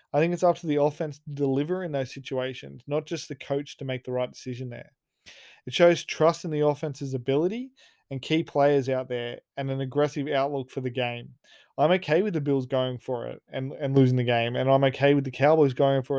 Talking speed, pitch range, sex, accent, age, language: 230 wpm, 130-150 Hz, male, Australian, 20-39, English